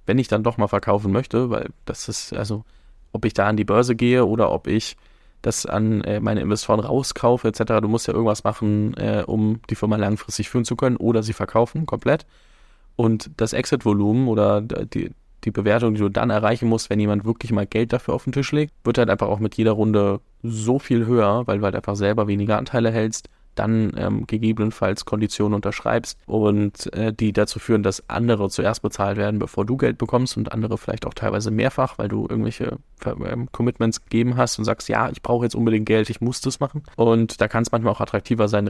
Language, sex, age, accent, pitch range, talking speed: German, male, 20-39, German, 105-120 Hz, 210 wpm